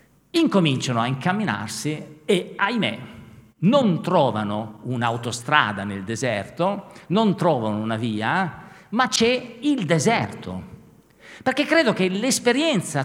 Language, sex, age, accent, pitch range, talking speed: Italian, male, 50-69, native, 125-200 Hz, 100 wpm